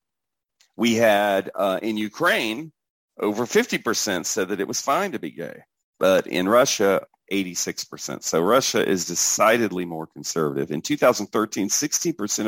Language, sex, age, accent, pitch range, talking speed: English, male, 50-69, American, 100-135 Hz, 150 wpm